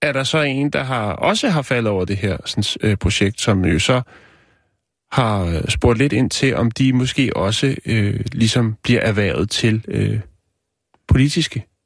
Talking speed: 145 wpm